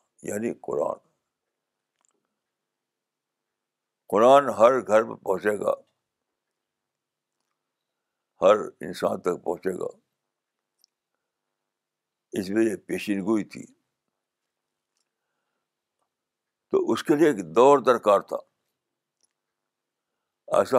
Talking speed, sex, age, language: 75 wpm, male, 60-79, Urdu